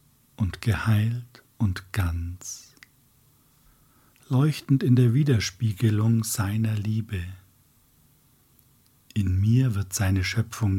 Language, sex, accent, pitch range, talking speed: German, male, German, 100-125 Hz, 85 wpm